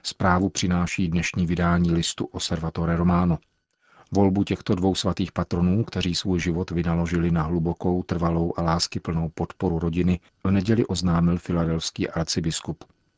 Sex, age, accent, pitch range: male, 40-59, native, 85-95 Hz